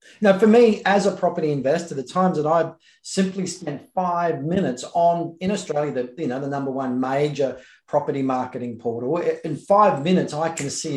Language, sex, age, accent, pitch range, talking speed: English, male, 40-59, Australian, 140-180 Hz, 185 wpm